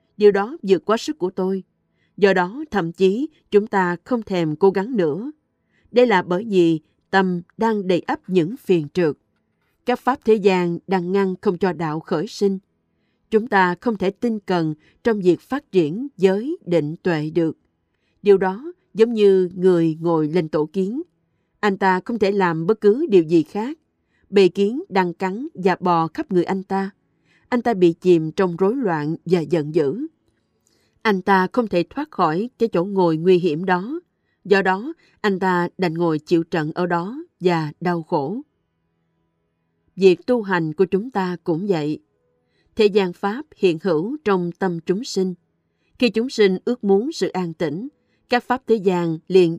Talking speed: 180 wpm